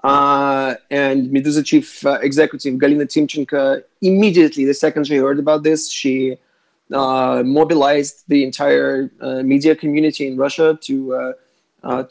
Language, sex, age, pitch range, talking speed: English, male, 30-49, 140-180 Hz, 140 wpm